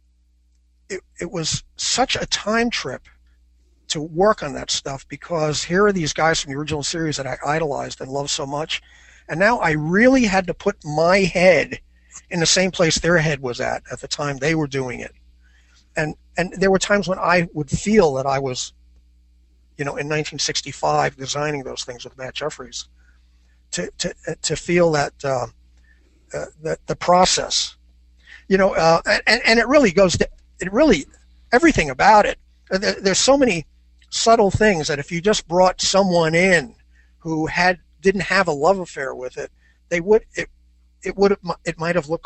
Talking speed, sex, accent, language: 180 wpm, male, American, English